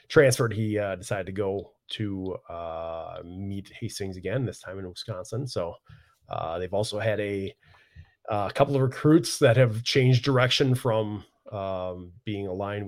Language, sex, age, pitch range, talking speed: English, male, 30-49, 95-125 Hz, 155 wpm